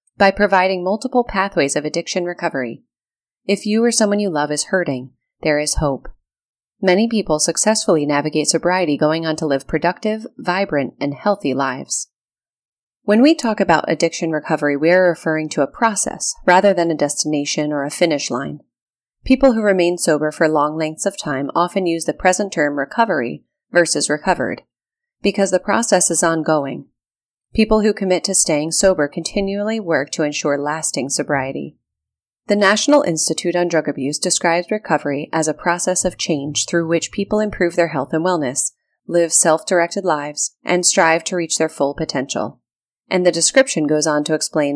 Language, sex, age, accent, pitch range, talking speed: English, female, 30-49, American, 150-195 Hz, 165 wpm